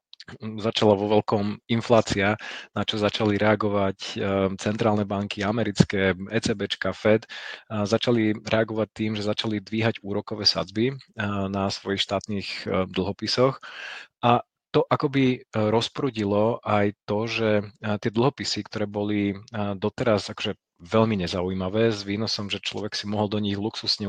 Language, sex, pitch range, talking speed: Slovak, male, 100-115 Hz, 120 wpm